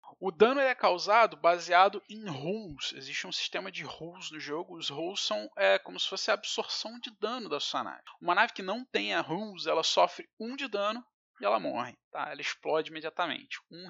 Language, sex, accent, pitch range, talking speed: Portuguese, male, Brazilian, 165-225 Hz, 210 wpm